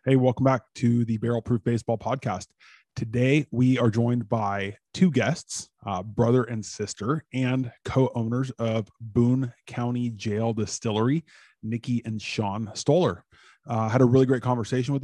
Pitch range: 110-125 Hz